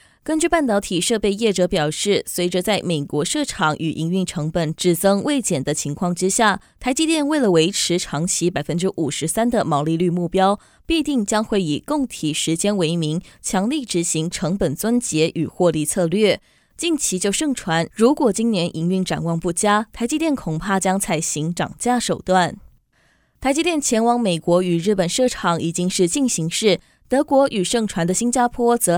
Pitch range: 170-230 Hz